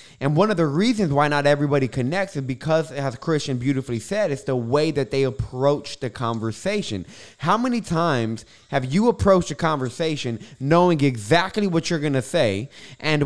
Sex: male